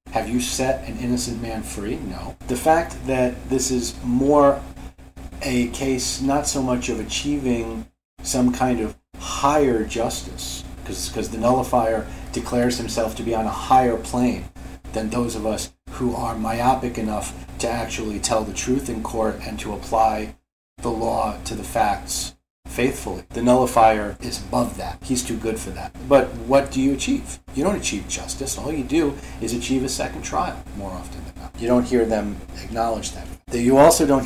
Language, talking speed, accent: English, 175 wpm, American